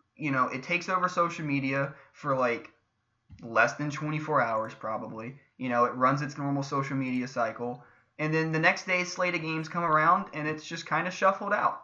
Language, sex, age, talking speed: English, male, 20-39, 205 wpm